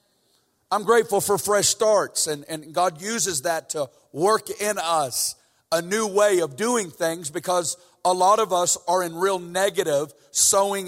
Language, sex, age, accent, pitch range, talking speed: English, male, 50-69, American, 175-220 Hz, 165 wpm